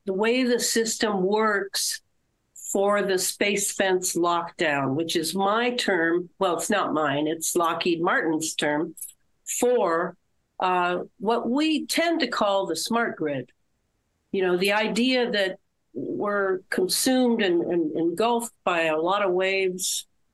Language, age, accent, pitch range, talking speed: English, 60-79, American, 170-210 Hz, 140 wpm